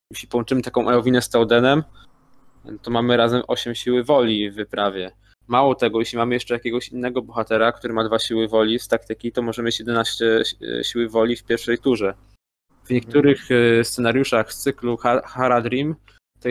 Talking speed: 165 wpm